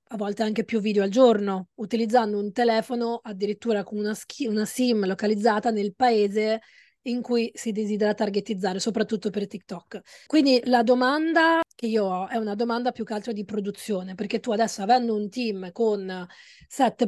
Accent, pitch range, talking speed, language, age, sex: native, 205-240 Hz, 170 wpm, Italian, 20-39, female